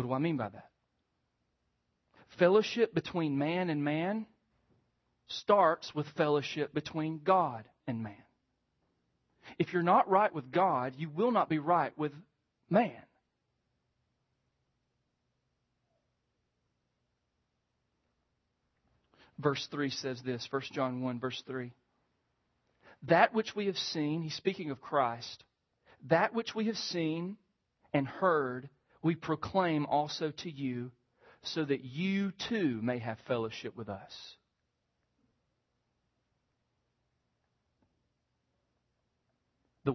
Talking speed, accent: 105 wpm, American